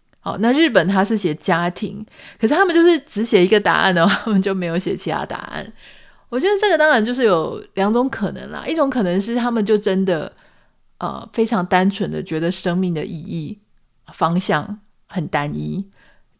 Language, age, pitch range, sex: Chinese, 30-49, 170-220 Hz, female